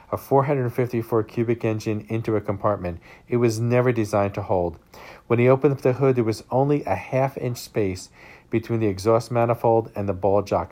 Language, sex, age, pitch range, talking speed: English, male, 50-69, 100-120 Hz, 180 wpm